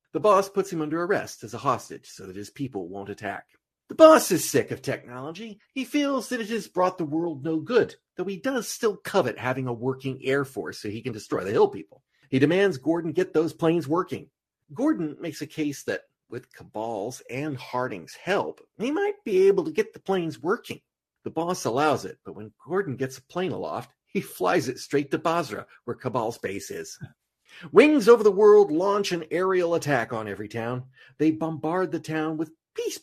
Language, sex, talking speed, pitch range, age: English, male, 205 wpm, 135-215 Hz, 40-59